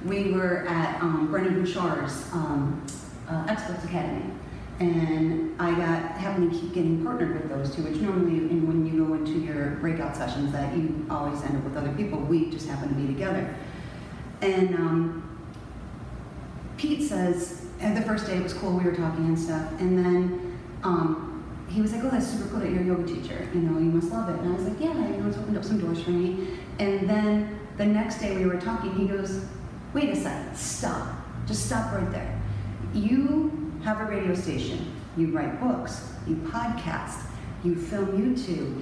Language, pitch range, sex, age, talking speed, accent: English, 160-210 Hz, female, 30-49, 195 wpm, American